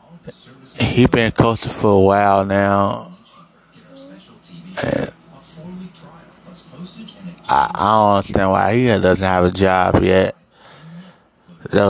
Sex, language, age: male, English, 20-39